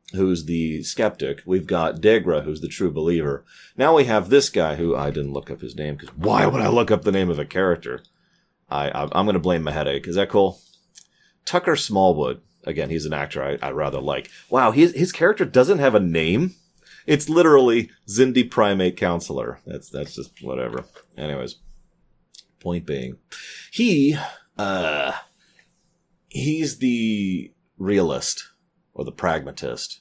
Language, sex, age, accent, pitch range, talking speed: English, male, 30-49, American, 85-125 Hz, 165 wpm